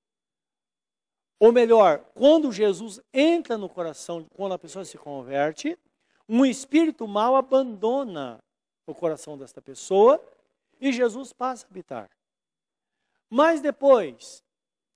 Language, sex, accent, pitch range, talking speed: Portuguese, male, Brazilian, 190-275 Hz, 110 wpm